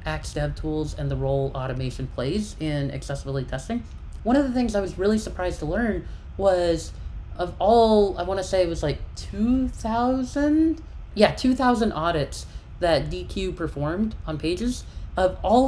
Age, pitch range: 30-49, 135-205 Hz